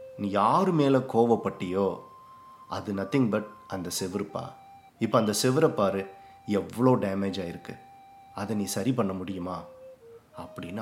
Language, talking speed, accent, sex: English, 110 wpm, Indian, male